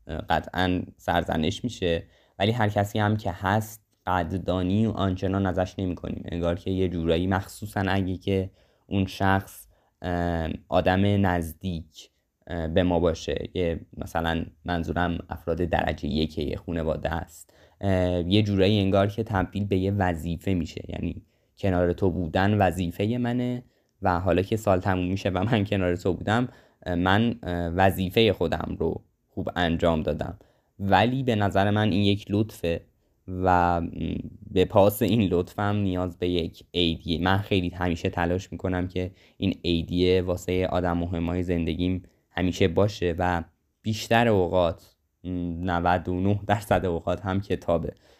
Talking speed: 135 wpm